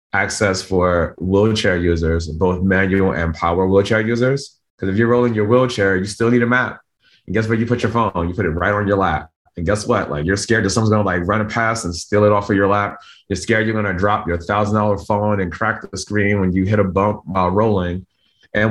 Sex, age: male, 30-49